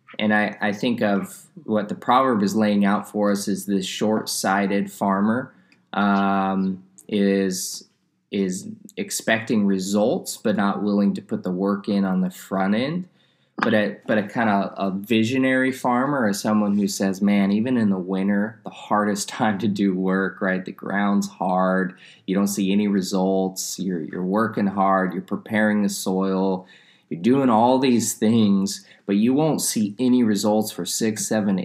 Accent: American